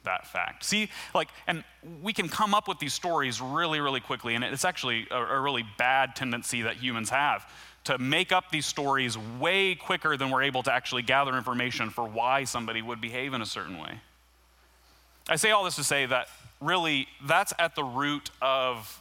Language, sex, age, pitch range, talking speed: English, male, 30-49, 125-165 Hz, 195 wpm